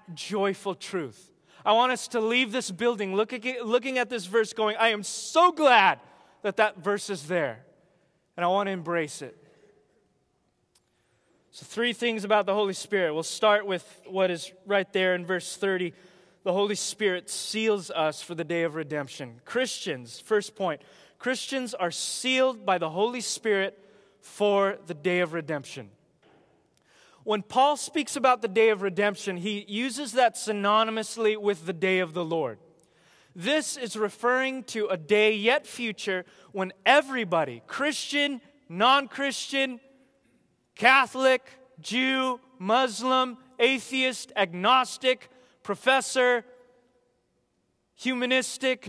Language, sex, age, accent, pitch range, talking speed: English, male, 20-39, American, 190-255 Hz, 135 wpm